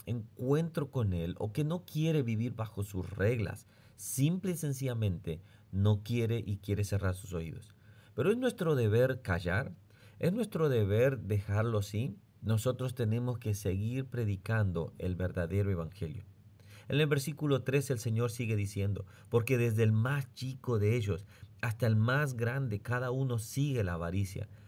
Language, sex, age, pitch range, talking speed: Spanish, male, 40-59, 100-125 Hz, 155 wpm